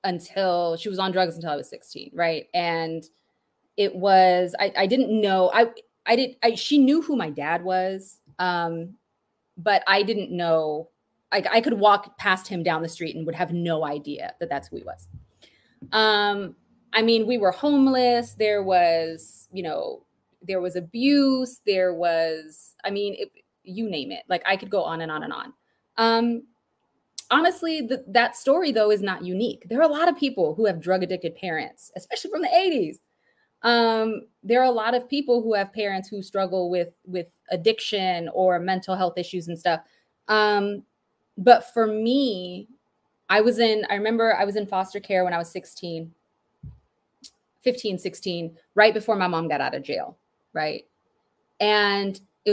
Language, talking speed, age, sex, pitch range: English, 180 wpm, 20-39, female, 180-230 Hz